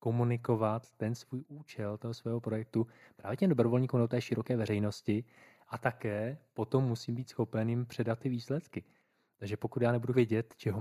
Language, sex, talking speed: Czech, male, 165 wpm